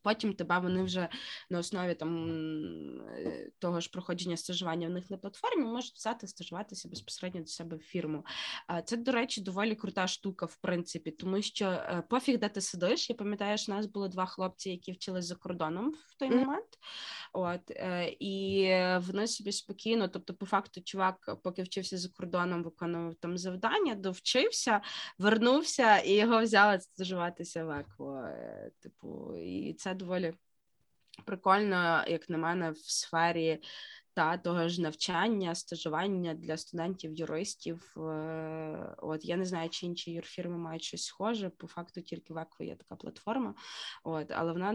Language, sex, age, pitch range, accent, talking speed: Ukrainian, female, 20-39, 165-195 Hz, native, 150 wpm